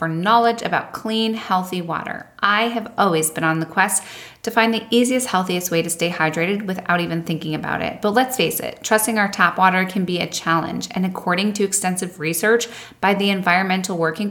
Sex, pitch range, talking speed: female, 175-220 Hz, 200 wpm